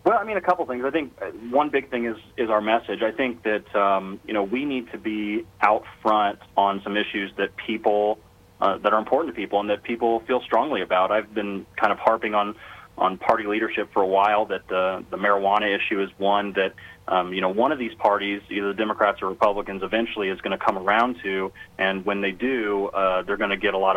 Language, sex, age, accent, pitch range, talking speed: English, male, 30-49, American, 95-115 Hz, 235 wpm